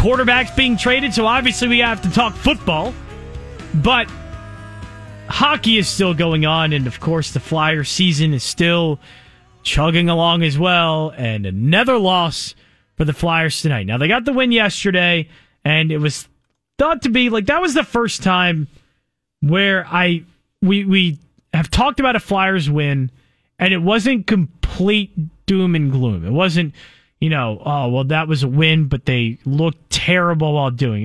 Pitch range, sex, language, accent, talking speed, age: 150-210 Hz, male, English, American, 165 wpm, 30-49